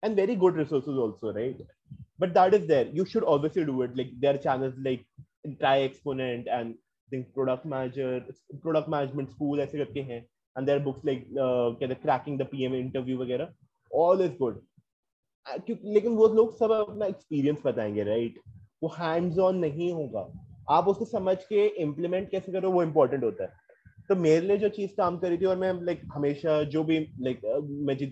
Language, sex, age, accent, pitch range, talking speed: Hindi, male, 20-39, native, 135-190 Hz, 180 wpm